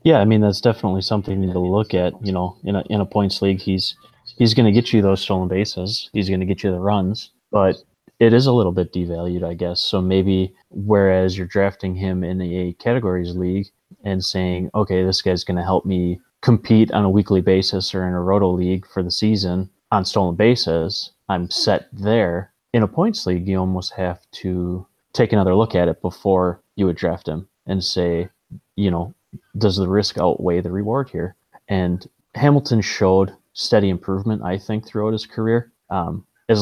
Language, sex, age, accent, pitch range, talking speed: English, male, 30-49, American, 90-105 Hz, 200 wpm